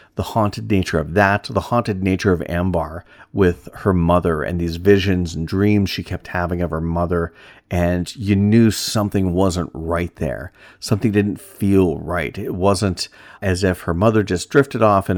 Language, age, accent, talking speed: English, 40-59, American, 180 wpm